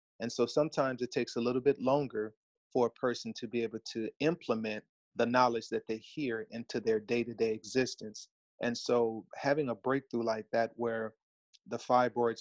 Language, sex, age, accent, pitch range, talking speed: English, male, 30-49, American, 115-130 Hz, 175 wpm